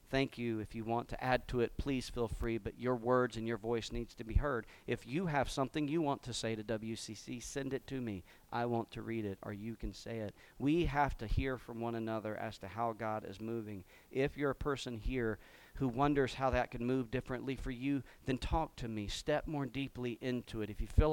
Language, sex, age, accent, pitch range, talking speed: English, male, 40-59, American, 115-135 Hz, 240 wpm